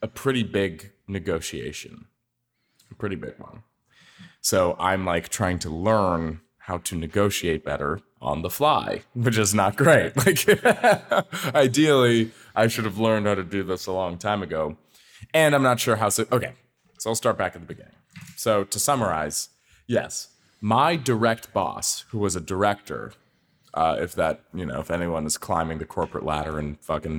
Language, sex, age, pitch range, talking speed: English, male, 20-39, 90-115 Hz, 170 wpm